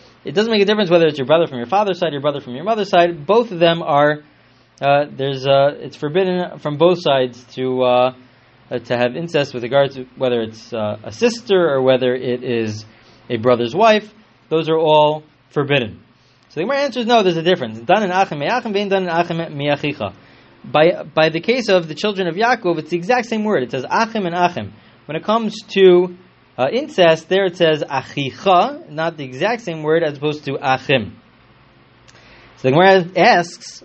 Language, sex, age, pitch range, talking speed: English, male, 20-39, 135-200 Hz, 200 wpm